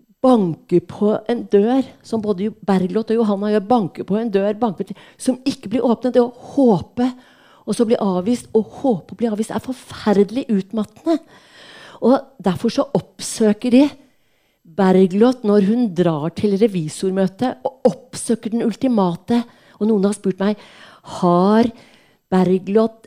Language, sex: Danish, female